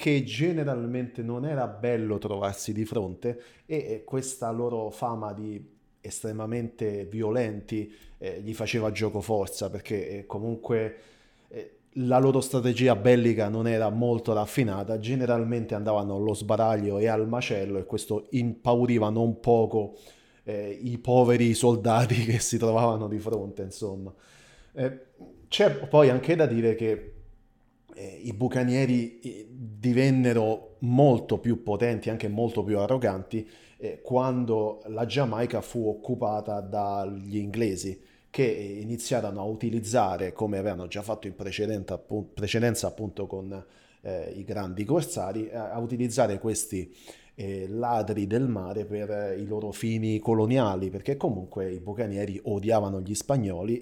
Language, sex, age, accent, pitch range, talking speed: Italian, male, 30-49, native, 105-120 Hz, 120 wpm